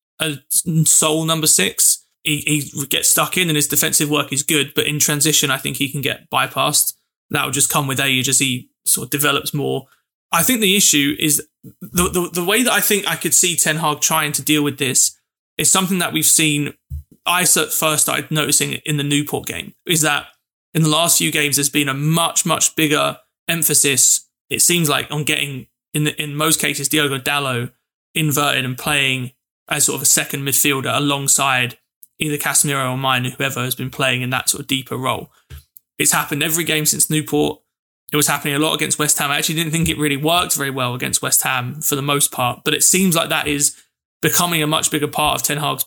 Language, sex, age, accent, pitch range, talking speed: English, male, 20-39, British, 140-155 Hz, 215 wpm